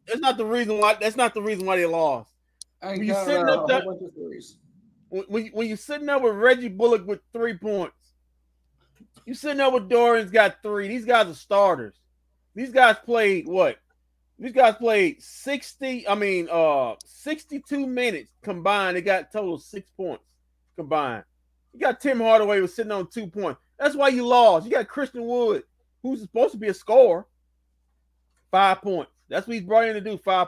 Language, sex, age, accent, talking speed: English, male, 30-49, American, 185 wpm